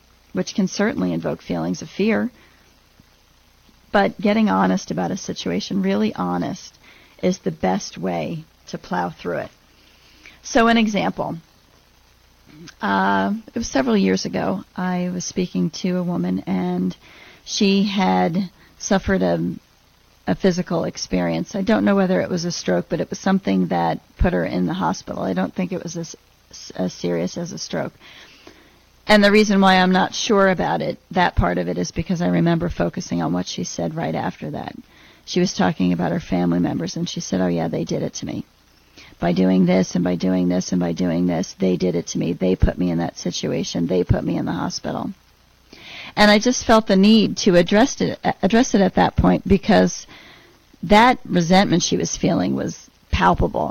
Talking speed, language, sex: 185 wpm, English, female